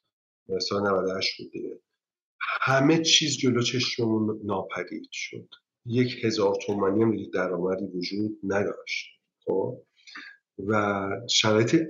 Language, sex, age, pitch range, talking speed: Persian, male, 50-69, 105-130 Hz, 70 wpm